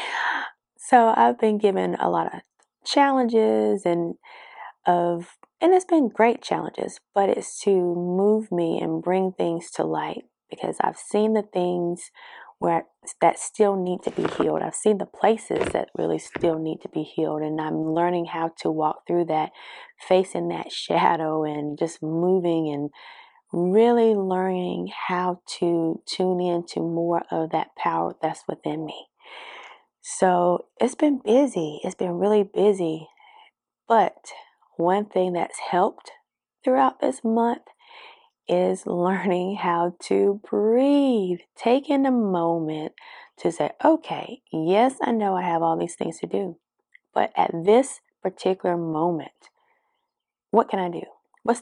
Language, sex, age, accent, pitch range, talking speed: English, female, 20-39, American, 170-235 Hz, 145 wpm